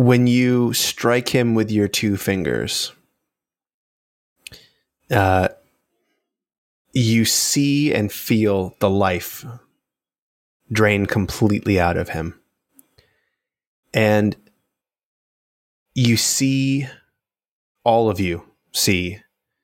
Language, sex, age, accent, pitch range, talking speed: English, male, 20-39, American, 95-110 Hz, 85 wpm